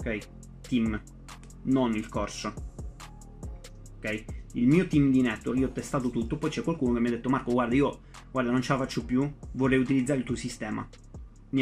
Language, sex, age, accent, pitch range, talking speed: Italian, male, 20-39, native, 120-140 Hz, 190 wpm